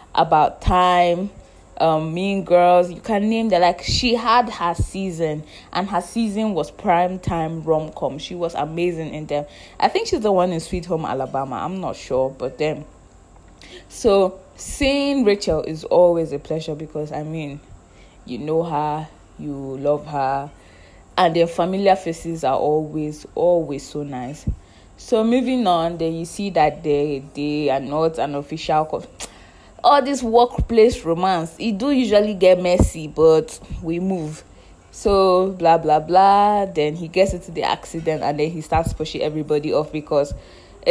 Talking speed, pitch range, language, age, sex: 160 wpm, 150-190 Hz, English, 20-39, female